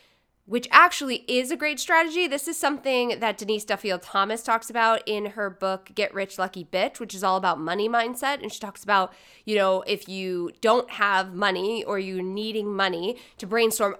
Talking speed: 195 wpm